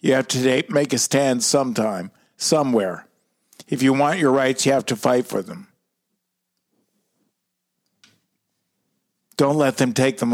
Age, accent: 50-69, American